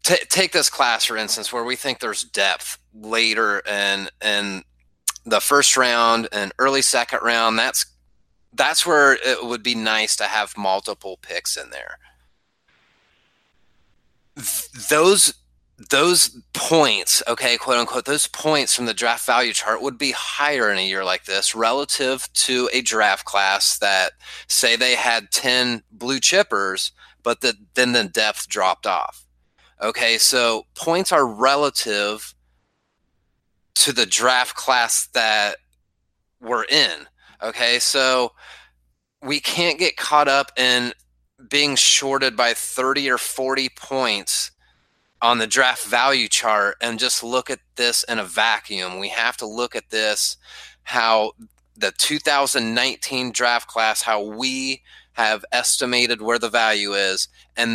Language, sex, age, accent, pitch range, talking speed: English, male, 30-49, American, 105-130 Hz, 140 wpm